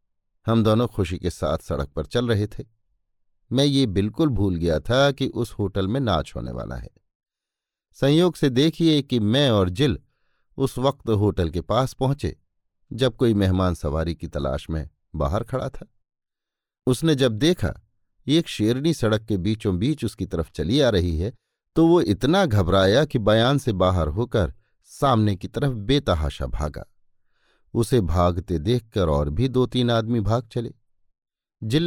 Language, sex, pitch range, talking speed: Hindi, male, 95-135 Hz, 160 wpm